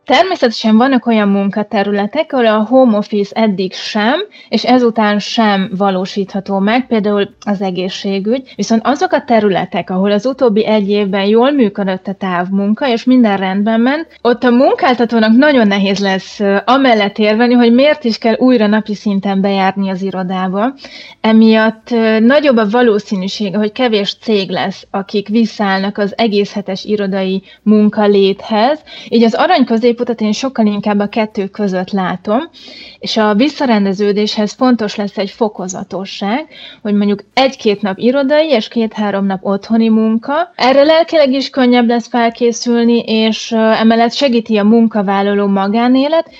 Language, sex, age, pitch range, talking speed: Hungarian, female, 30-49, 200-240 Hz, 140 wpm